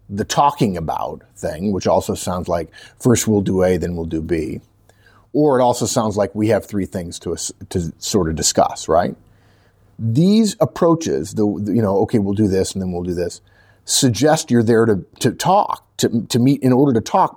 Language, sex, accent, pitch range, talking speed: English, male, American, 95-120 Hz, 200 wpm